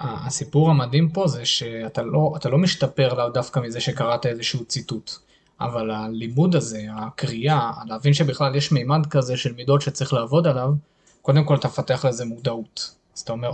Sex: male